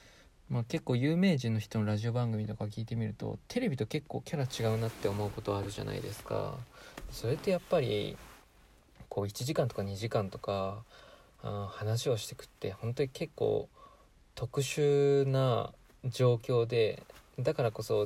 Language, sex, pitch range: Japanese, male, 110-145 Hz